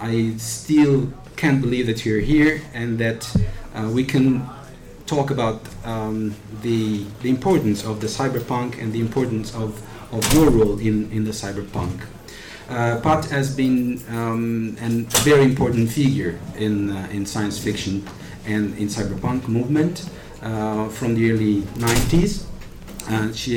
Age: 50-69